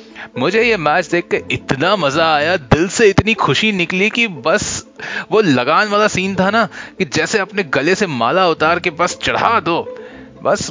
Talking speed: 180 wpm